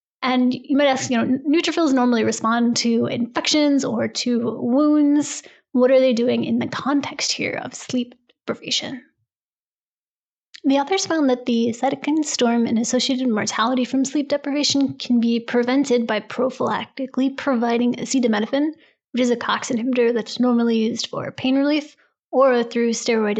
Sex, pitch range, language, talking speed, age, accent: female, 235-275 Hz, English, 150 wpm, 20-39, American